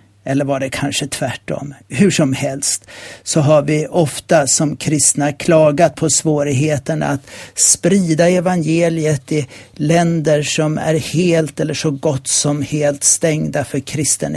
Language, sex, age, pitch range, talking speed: Swedish, male, 60-79, 120-165 Hz, 140 wpm